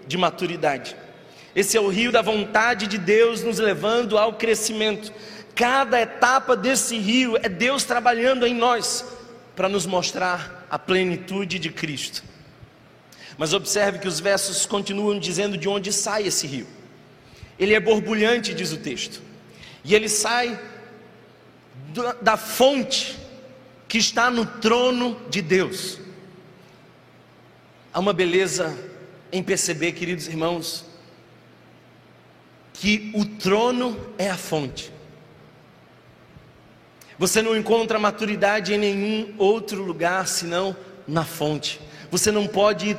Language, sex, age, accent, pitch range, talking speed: Portuguese, male, 40-59, Brazilian, 180-230 Hz, 120 wpm